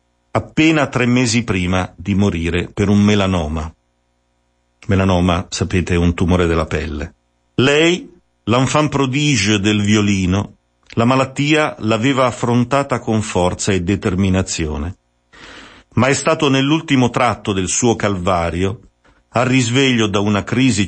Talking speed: 120 wpm